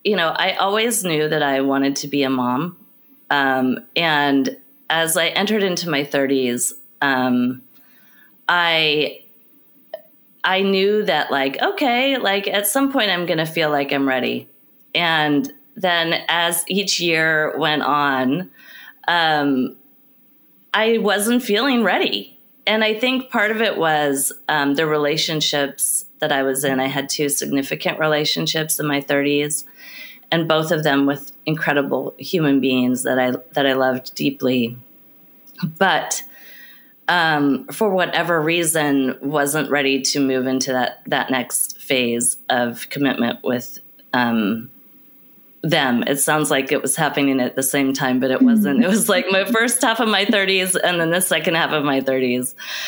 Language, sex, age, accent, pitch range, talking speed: English, female, 30-49, American, 140-195 Hz, 155 wpm